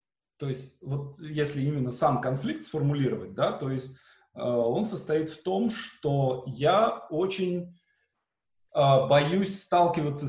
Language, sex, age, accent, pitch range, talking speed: Russian, male, 20-39, native, 120-155 Hz, 130 wpm